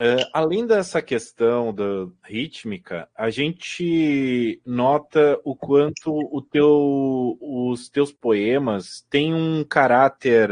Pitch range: 125-165 Hz